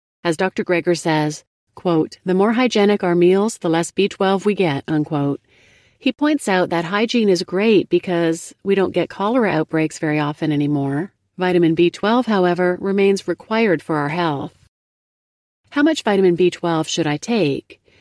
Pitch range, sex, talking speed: 155-200 Hz, female, 155 wpm